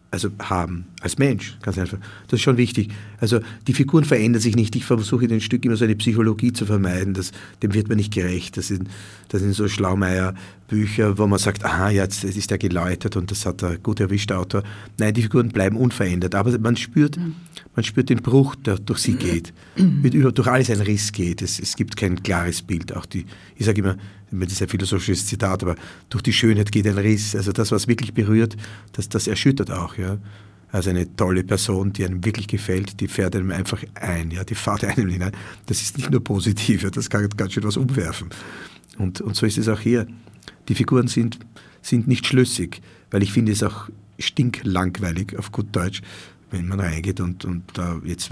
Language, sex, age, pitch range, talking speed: German, male, 50-69, 95-115 Hz, 210 wpm